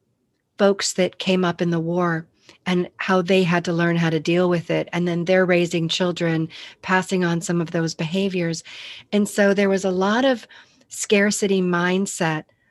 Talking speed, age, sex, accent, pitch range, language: 180 wpm, 40-59, female, American, 160-190 Hz, English